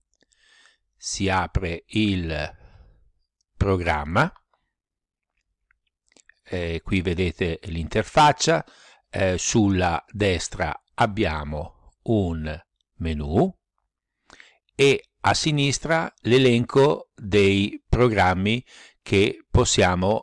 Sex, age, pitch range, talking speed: male, 60-79, 85-115 Hz, 60 wpm